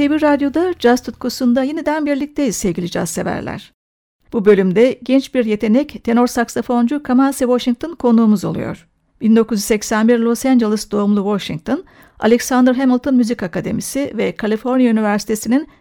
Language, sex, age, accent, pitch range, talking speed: Turkish, female, 60-79, native, 220-260 Hz, 120 wpm